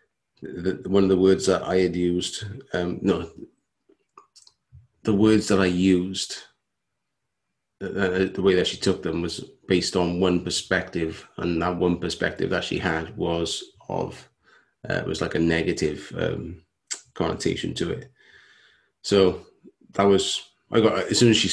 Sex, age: male, 30-49